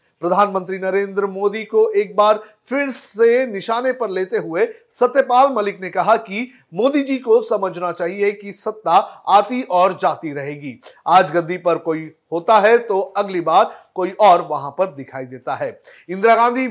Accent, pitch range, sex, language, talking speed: native, 180-235 Hz, male, Hindi, 165 wpm